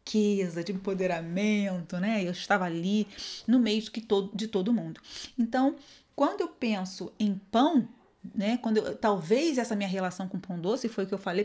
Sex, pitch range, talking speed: female, 200-275 Hz, 170 wpm